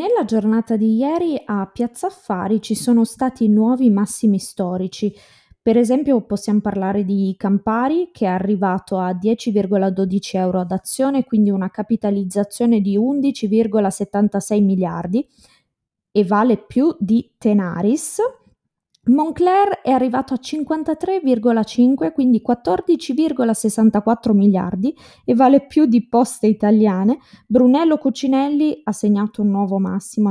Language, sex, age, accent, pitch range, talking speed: Italian, female, 20-39, native, 195-250 Hz, 115 wpm